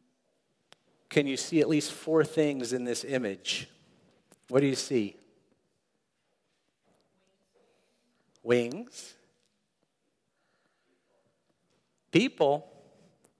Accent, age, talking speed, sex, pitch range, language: American, 50-69, 70 wpm, male, 120-170 Hz, English